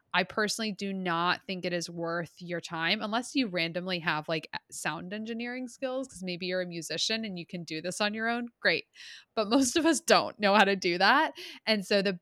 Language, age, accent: English, 20-39, American